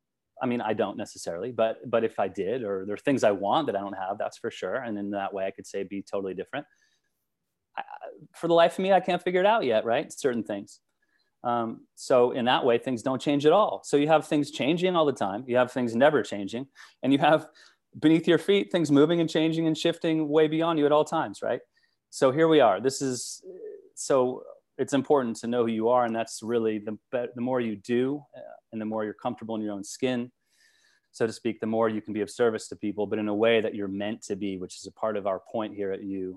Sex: male